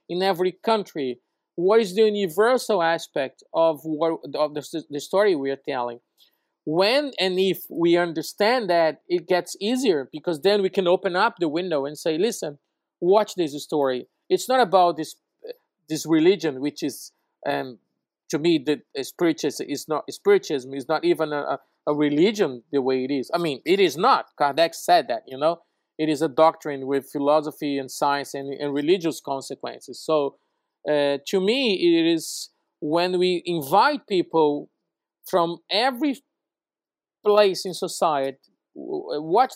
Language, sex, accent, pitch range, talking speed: English, male, Brazilian, 155-215 Hz, 160 wpm